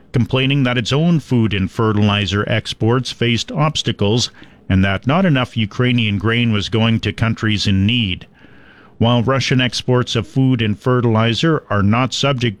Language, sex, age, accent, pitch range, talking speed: English, male, 50-69, American, 105-130 Hz, 150 wpm